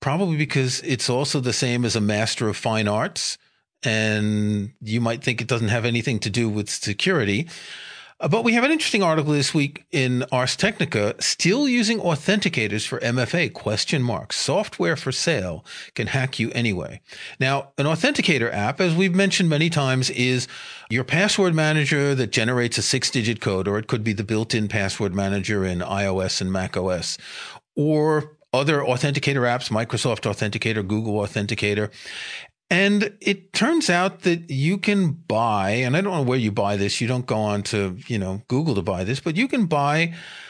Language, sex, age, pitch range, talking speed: English, male, 40-59, 110-165 Hz, 175 wpm